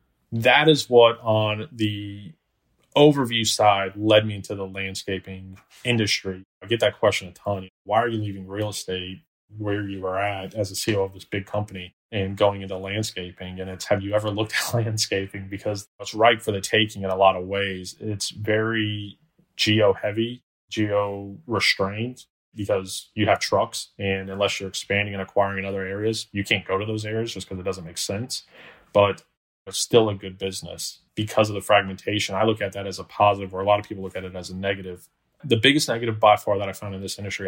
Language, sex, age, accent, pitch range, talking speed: English, male, 20-39, American, 95-110 Hz, 200 wpm